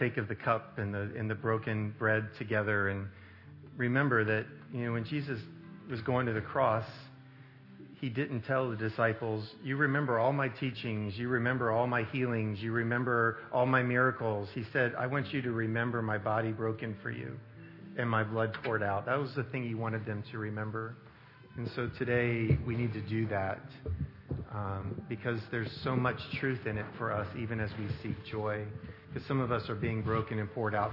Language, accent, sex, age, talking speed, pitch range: English, American, male, 40-59, 195 wpm, 110-125 Hz